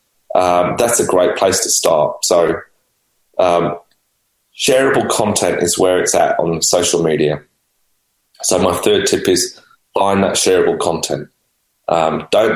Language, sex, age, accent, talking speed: English, male, 20-39, British, 140 wpm